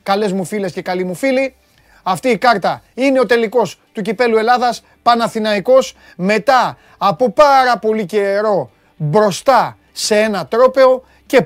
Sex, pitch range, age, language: male, 170-225 Hz, 30-49, Greek